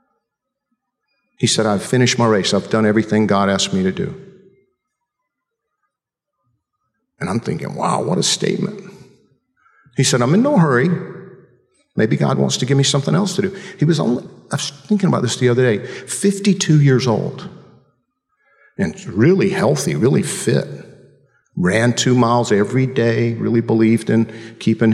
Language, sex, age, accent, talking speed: English, male, 50-69, American, 155 wpm